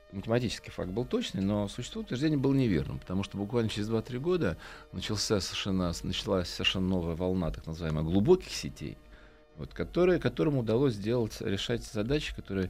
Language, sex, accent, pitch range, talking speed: Russian, male, native, 85-120 Hz, 150 wpm